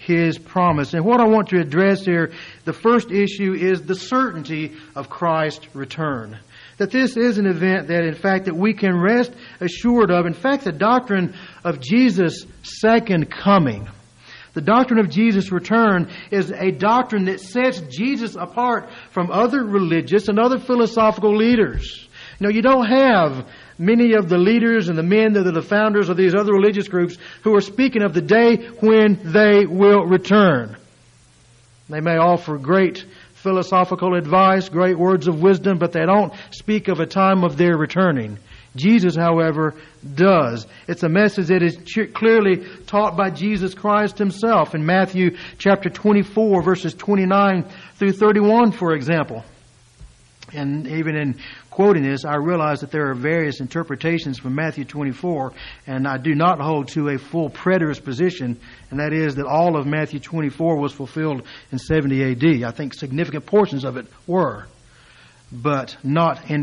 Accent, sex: American, male